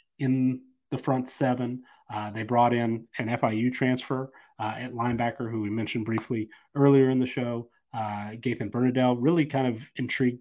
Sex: male